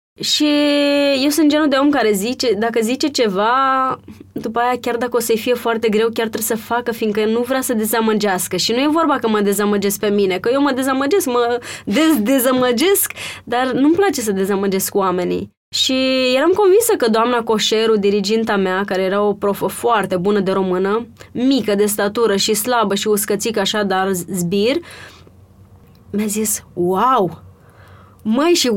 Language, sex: Romanian, female